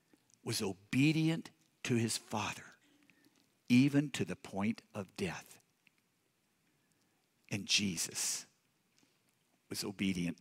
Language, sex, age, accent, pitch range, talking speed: English, male, 60-79, American, 110-155 Hz, 85 wpm